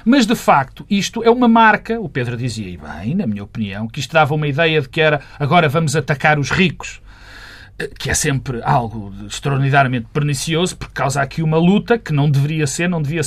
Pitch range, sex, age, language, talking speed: 125-180 Hz, male, 40-59, Portuguese, 205 wpm